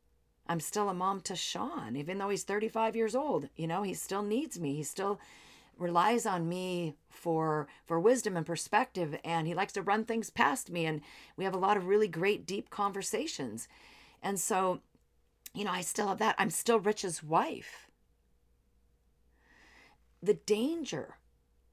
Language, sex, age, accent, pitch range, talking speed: English, female, 40-59, American, 150-205 Hz, 165 wpm